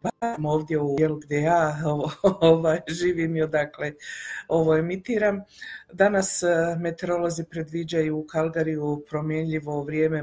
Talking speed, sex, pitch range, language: 105 wpm, female, 155-180 Hz, Croatian